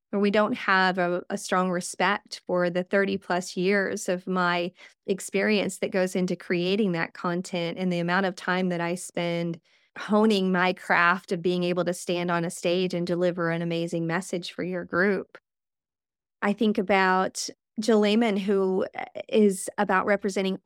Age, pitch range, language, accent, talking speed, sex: 30-49, 180-205 Hz, English, American, 165 wpm, female